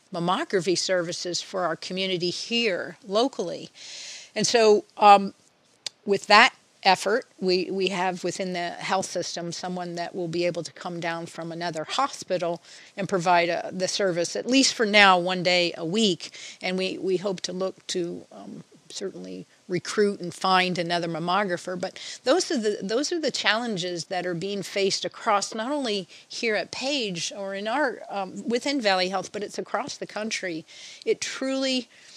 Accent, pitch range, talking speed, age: American, 180-210 Hz, 165 wpm, 40-59